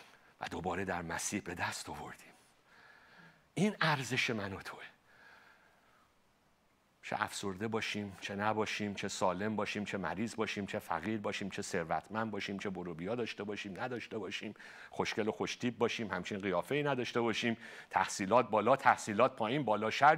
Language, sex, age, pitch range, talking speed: Persian, male, 50-69, 100-130 Hz, 150 wpm